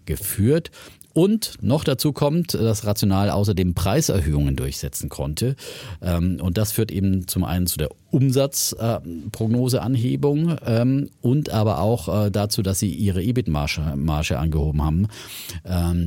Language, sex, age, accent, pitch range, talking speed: German, male, 40-59, German, 90-110 Hz, 125 wpm